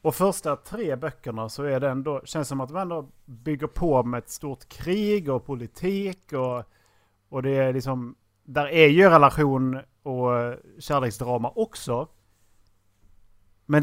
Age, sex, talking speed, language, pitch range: 30-49, male, 145 wpm, Swedish, 115-165 Hz